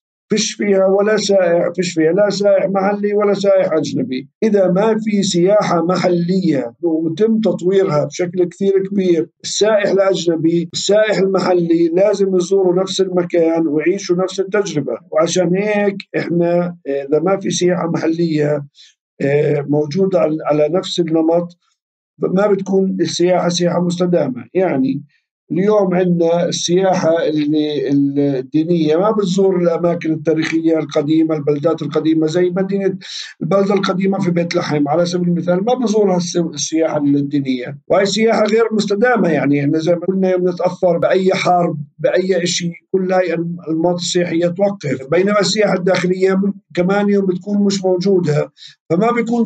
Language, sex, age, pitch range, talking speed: Arabic, male, 50-69, 165-195 Hz, 125 wpm